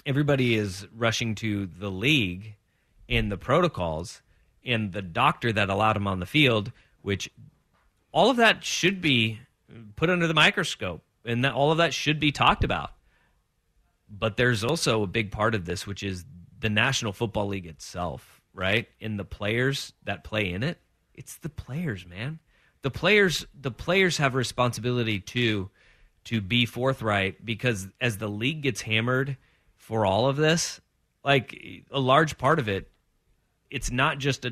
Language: English